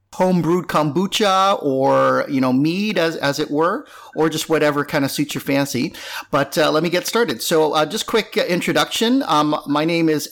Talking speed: 190 wpm